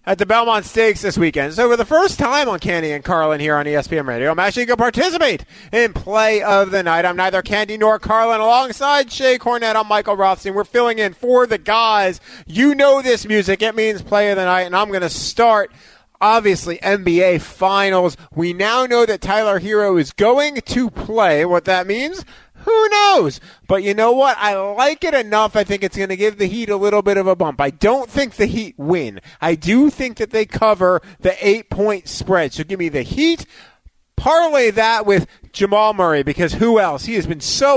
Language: English